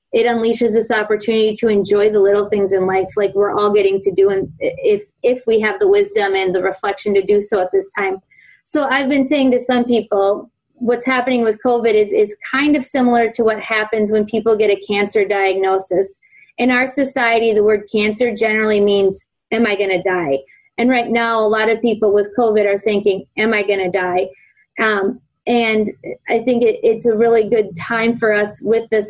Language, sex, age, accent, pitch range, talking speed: English, female, 20-39, American, 205-250 Hz, 205 wpm